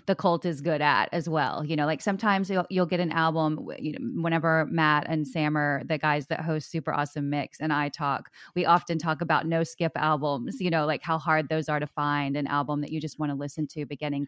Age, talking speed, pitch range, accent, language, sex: 30-49, 250 wpm, 150-180 Hz, American, English, female